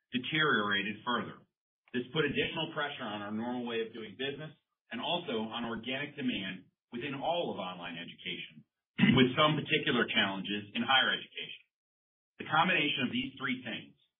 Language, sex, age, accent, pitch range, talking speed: English, male, 40-59, American, 115-150 Hz, 150 wpm